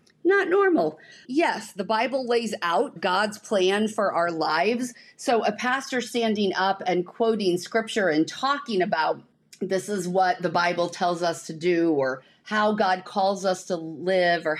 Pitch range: 175-235 Hz